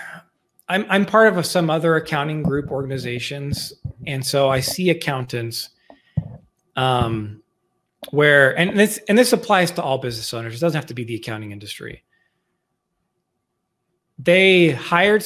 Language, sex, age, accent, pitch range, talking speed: English, male, 30-49, American, 130-175 Hz, 135 wpm